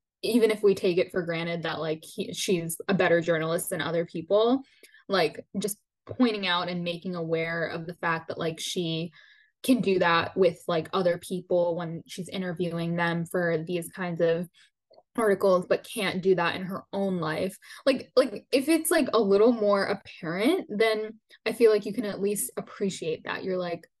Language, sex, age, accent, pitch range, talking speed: English, female, 10-29, American, 170-220 Hz, 185 wpm